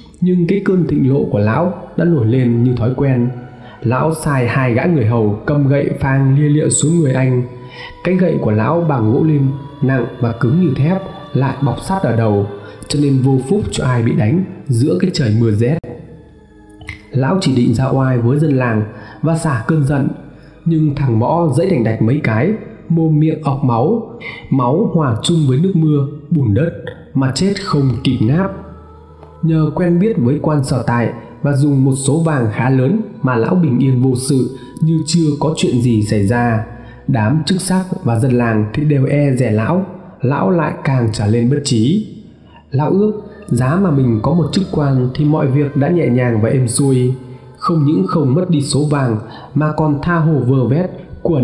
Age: 20-39